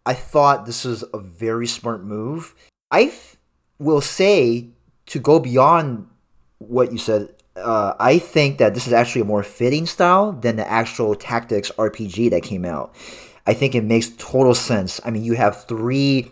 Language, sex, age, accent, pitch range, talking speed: English, male, 30-49, American, 110-140 Hz, 175 wpm